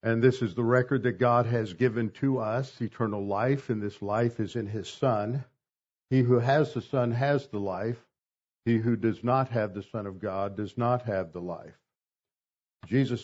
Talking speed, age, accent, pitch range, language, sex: 195 wpm, 60-79, American, 105-130 Hz, English, male